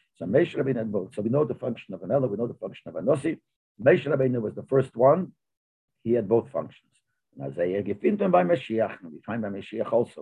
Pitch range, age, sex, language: 110-135 Hz, 50-69, male, English